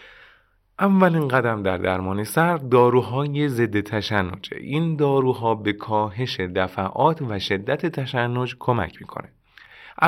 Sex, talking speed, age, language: male, 105 wpm, 30-49, Persian